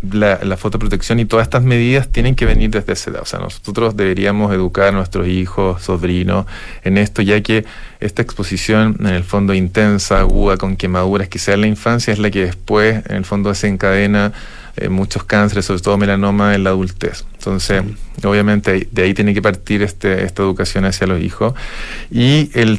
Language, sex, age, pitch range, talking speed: Spanish, male, 30-49, 95-105 Hz, 185 wpm